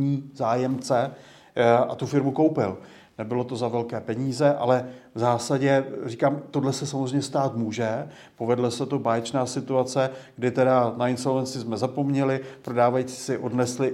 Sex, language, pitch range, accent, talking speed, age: male, Czech, 125-140 Hz, native, 140 wpm, 40-59